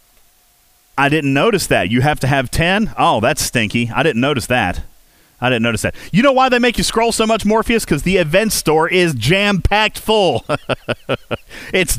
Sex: male